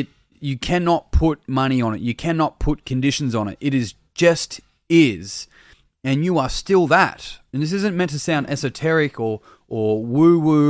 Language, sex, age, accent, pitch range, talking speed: English, male, 30-49, Australian, 110-140 Hz, 175 wpm